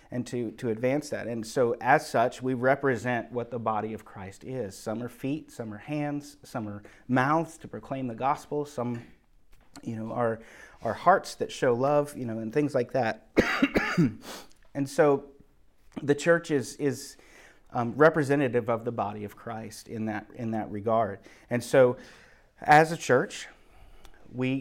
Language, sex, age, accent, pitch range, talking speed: English, male, 30-49, American, 115-140 Hz, 170 wpm